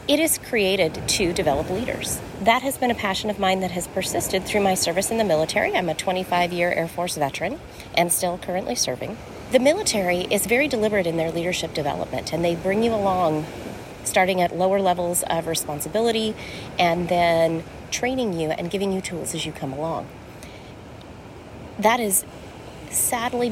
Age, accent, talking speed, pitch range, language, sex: 30-49, American, 175 wpm, 170-230 Hz, English, female